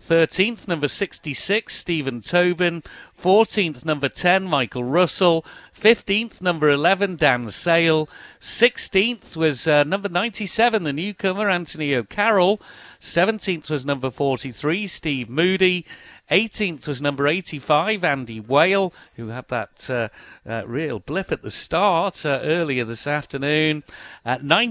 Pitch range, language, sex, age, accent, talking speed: 130-180 Hz, English, male, 50-69, British, 125 wpm